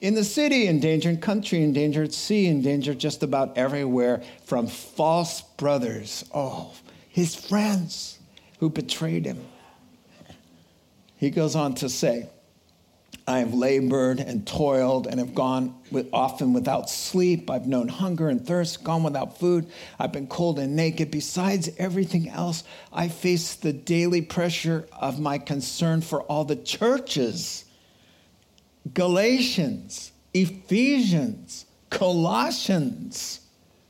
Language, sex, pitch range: English, male, 145-200 Hz